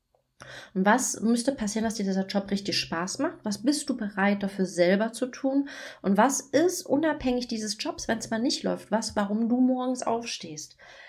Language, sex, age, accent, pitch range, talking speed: German, female, 30-49, German, 190-235 Hz, 190 wpm